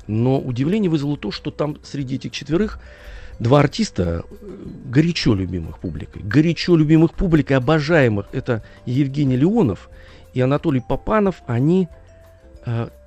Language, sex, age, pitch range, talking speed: Russian, male, 40-59, 100-150 Hz, 120 wpm